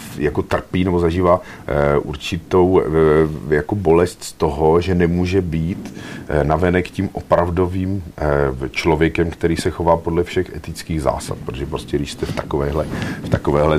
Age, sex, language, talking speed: 50-69, male, Czech, 150 wpm